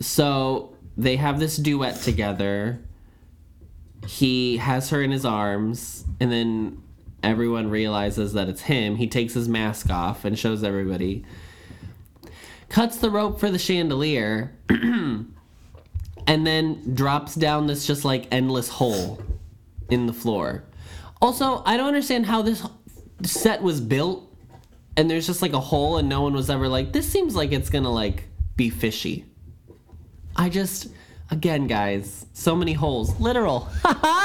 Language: English